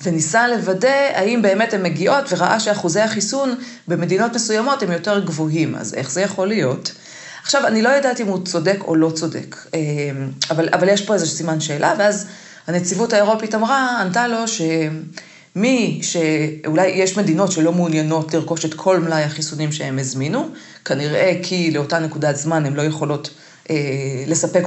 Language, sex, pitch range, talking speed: Hebrew, female, 155-205 Hz, 160 wpm